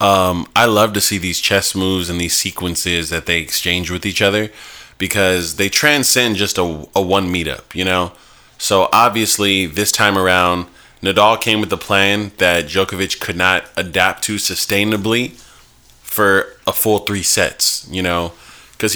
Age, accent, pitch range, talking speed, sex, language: 20-39, American, 85-100 Hz, 165 wpm, male, English